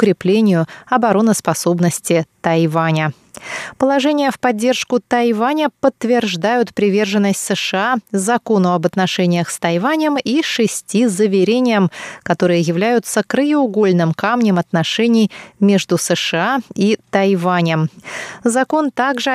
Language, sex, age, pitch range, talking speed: Russian, female, 20-39, 180-230 Hz, 90 wpm